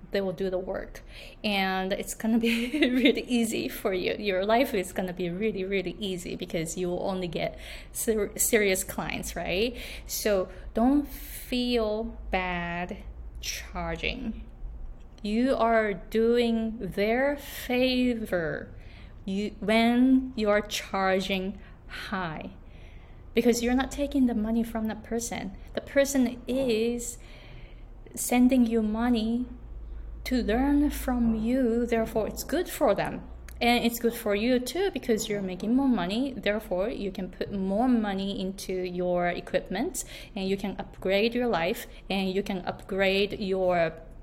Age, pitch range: 20-39, 190-240 Hz